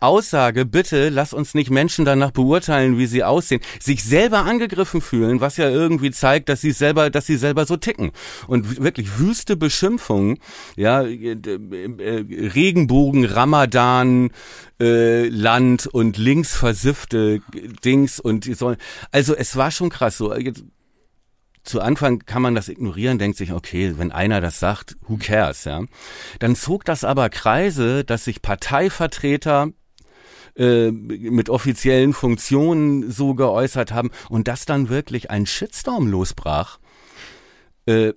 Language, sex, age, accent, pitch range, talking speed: German, male, 40-59, German, 115-145 Hz, 135 wpm